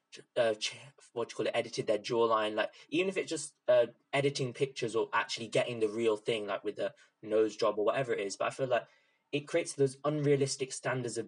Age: 20-39